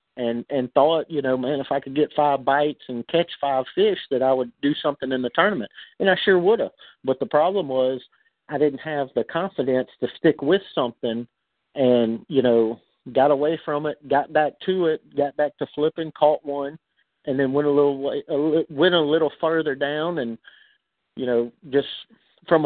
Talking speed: 190 wpm